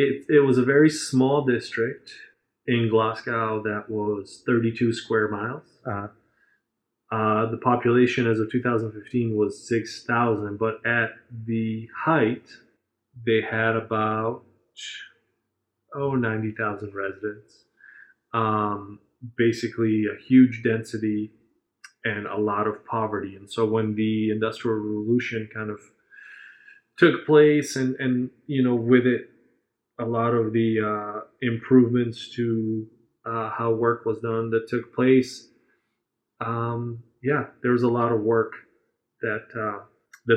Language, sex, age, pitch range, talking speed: English, male, 20-39, 110-125 Hz, 125 wpm